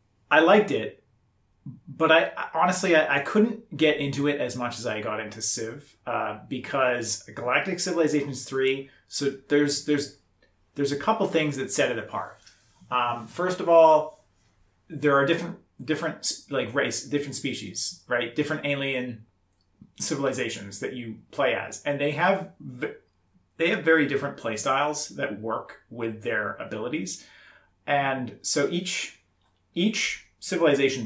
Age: 30-49